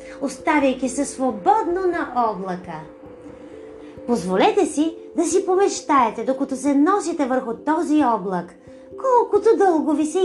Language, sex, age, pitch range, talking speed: Bulgarian, female, 30-49, 255-365 Hz, 115 wpm